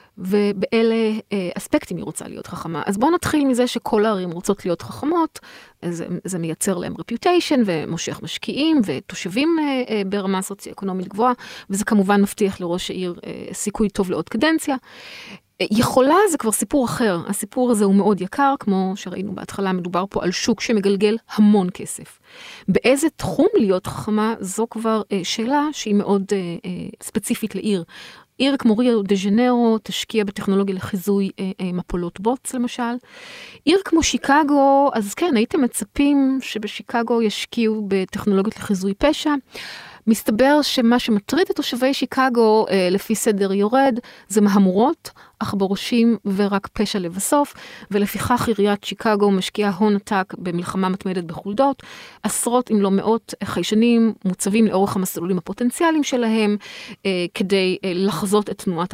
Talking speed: 135 wpm